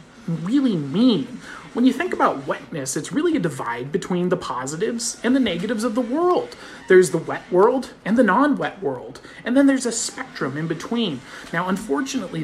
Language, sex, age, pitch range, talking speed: English, male, 30-49, 170-255 Hz, 180 wpm